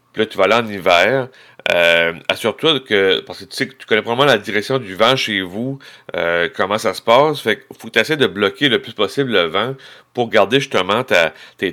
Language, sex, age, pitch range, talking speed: French, male, 30-49, 95-115 Hz, 230 wpm